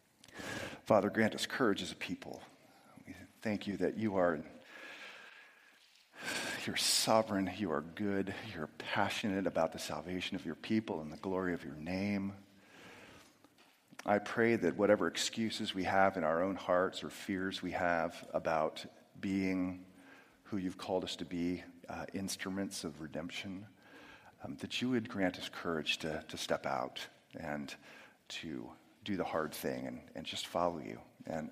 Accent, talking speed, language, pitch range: American, 155 wpm, English, 90-105 Hz